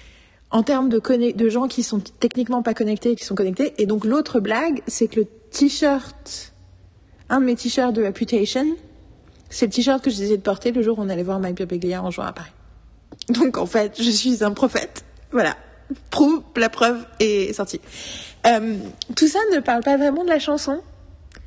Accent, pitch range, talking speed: French, 190-240 Hz, 200 wpm